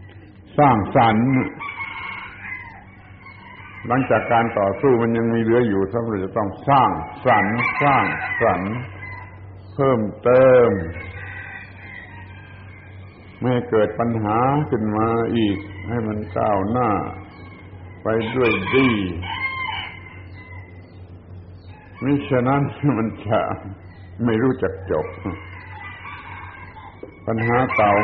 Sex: male